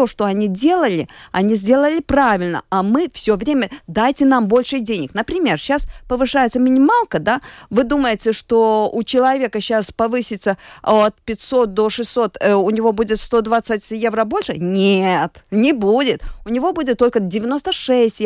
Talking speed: 145 wpm